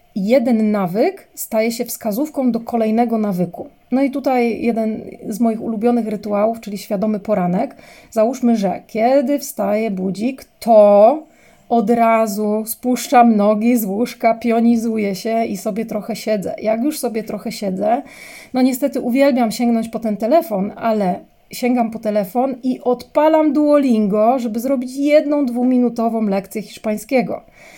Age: 30-49